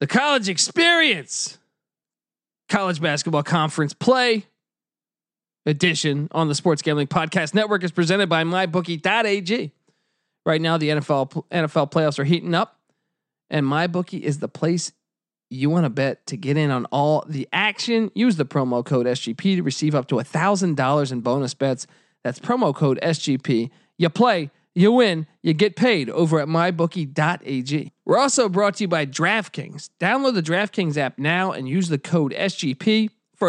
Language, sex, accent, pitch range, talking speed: English, male, American, 150-210 Hz, 160 wpm